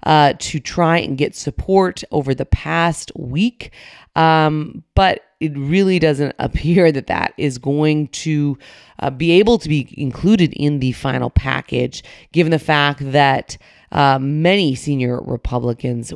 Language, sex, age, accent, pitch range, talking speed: English, female, 30-49, American, 135-180 Hz, 145 wpm